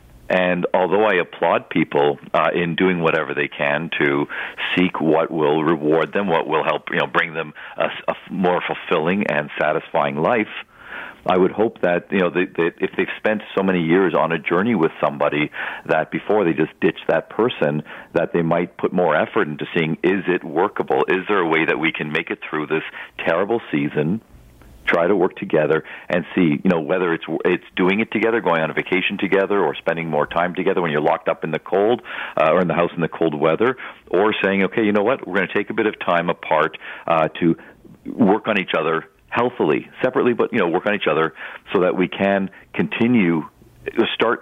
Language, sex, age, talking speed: English, male, 50-69, 210 wpm